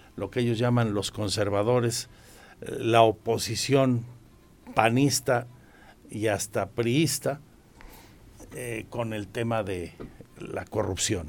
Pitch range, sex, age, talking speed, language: 105-130 Hz, male, 60-79, 100 wpm, Spanish